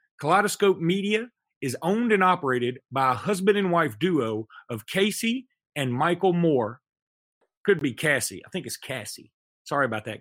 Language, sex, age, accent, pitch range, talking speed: English, male, 40-59, American, 135-195 Hz, 160 wpm